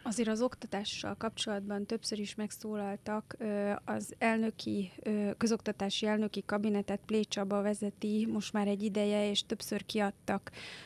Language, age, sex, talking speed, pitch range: Hungarian, 30-49, female, 115 wpm, 200-215 Hz